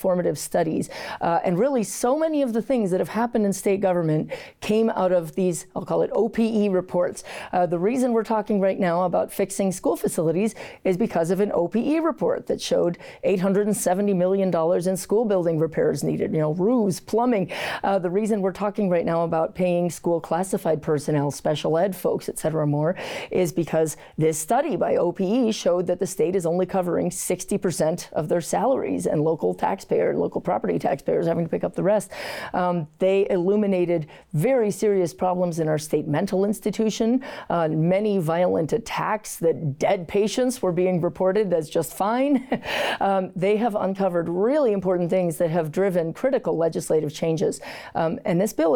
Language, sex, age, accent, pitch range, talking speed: English, female, 40-59, American, 165-210 Hz, 175 wpm